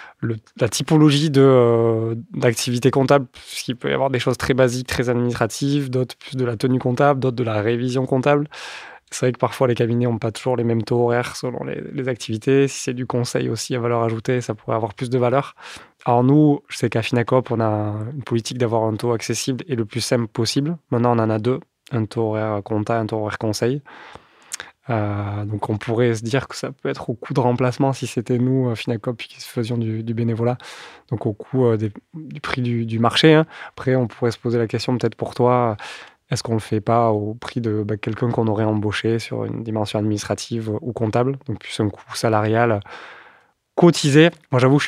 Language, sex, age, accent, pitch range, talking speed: French, male, 20-39, French, 115-130 Hz, 220 wpm